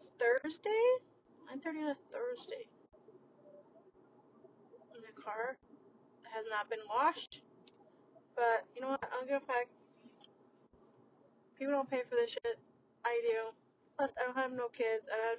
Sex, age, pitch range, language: female, 20-39, 225-290 Hz, English